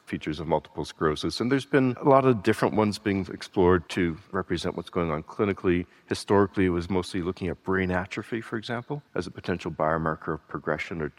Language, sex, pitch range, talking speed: English, male, 85-100 Hz, 200 wpm